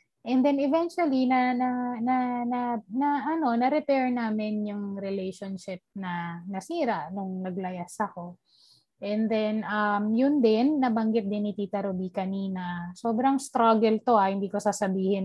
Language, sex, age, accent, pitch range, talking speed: Filipino, female, 20-39, native, 195-245 Hz, 145 wpm